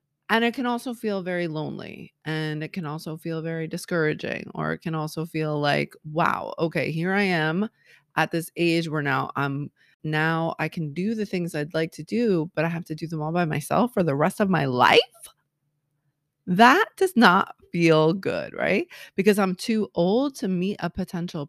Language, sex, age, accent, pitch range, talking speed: English, female, 30-49, American, 155-225 Hz, 195 wpm